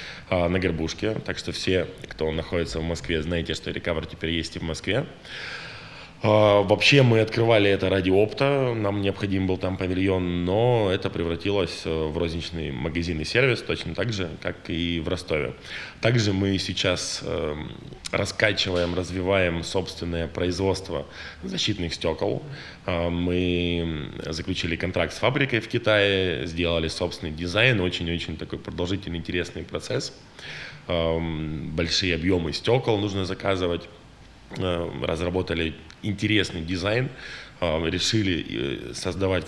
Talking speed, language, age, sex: 115 wpm, Russian, 20-39, male